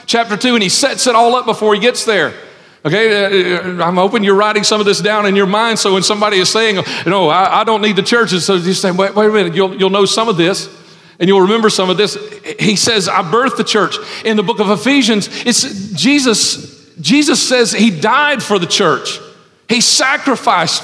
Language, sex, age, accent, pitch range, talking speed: English, male, 40-59, American, 195-230 Hz, 220 wpm